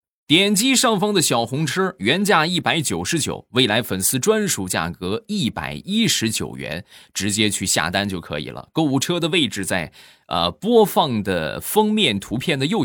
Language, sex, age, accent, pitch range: Chinese, male, 20-39, native, 95-160 Hz